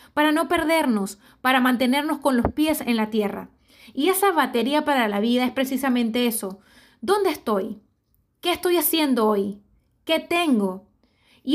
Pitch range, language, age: 225-290 Hz, Spanish, 20-39